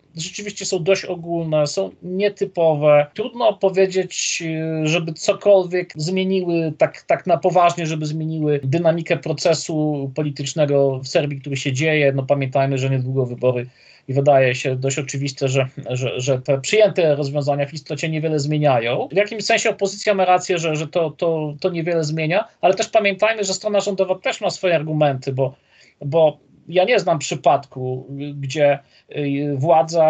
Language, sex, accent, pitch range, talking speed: Polish, male, native, 145-170 Hz, 150 wpm